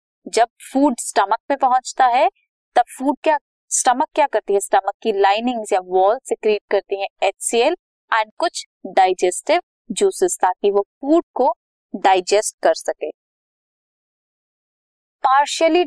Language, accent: Hindi, native